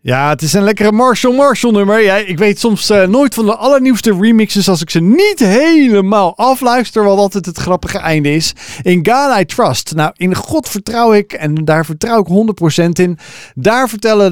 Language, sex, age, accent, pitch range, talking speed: Dutch, male, 40-59, Dutch, 160-215 Hz, 195 wpm